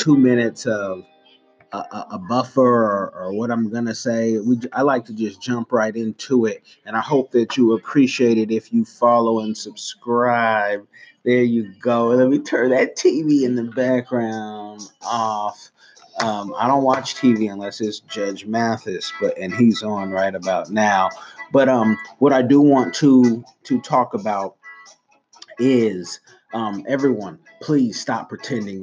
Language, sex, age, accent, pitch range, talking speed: English, male, 30-49, American, 105-125 Hz, 155 wpm